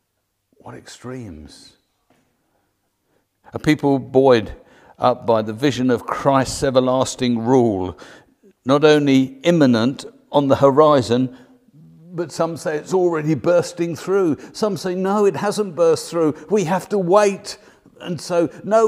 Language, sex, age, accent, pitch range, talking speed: English, male, 50-69, British, 115-175 Hz, 125 wpm